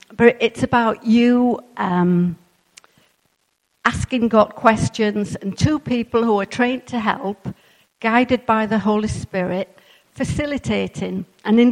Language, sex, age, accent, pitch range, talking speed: English, female, 50-69, British, 185-235 Hz, 120 wpm